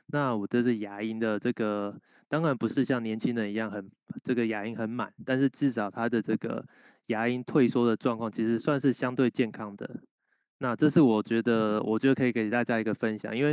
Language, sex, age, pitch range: Chinese, male, 20-39, 110-125 Hz